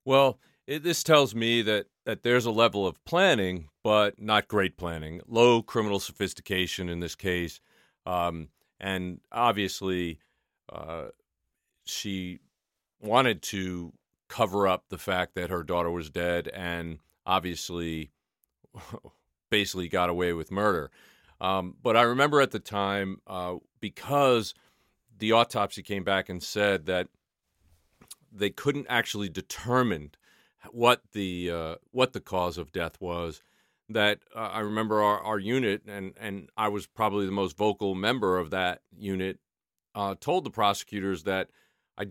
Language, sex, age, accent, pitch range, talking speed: English, male, 40-59, American, 90-105 Hz, 140 wpm